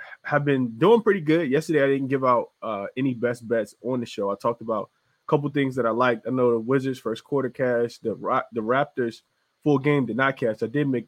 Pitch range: 110-135 Hz